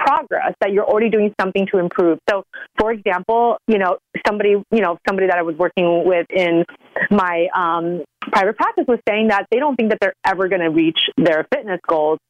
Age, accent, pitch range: 30-49, American, 195-265 Hz